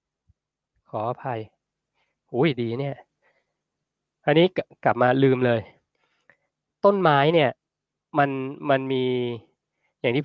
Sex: male